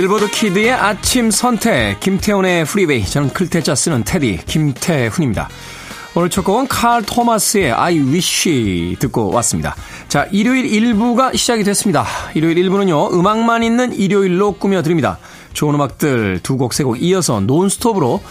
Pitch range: 145-210 Hz